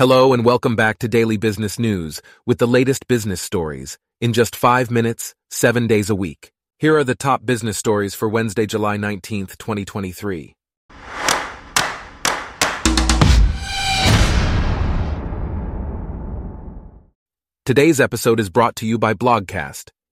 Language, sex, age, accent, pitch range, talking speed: English, male, 30-49, American, 95-120 Hz, 120 wpm